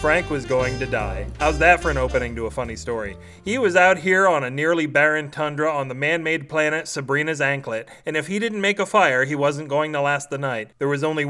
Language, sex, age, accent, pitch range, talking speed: English, male, 30-49, American, 130-165 Hz, 245 wpm